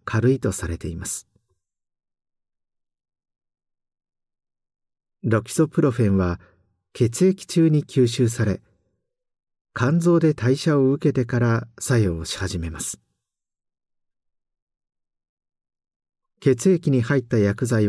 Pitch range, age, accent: 95-140 Hz, 50-69, native